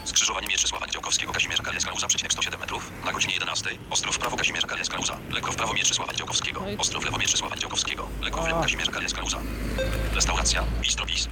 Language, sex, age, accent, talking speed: Polish, male, 40-59, native, 180 wpm